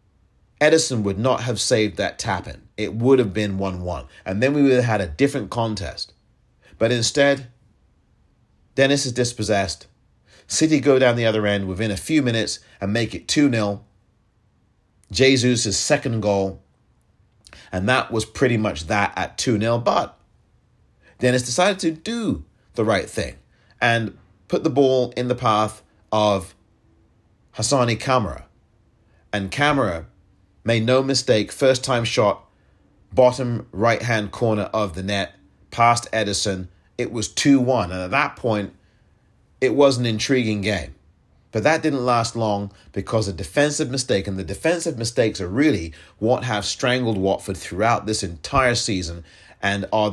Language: English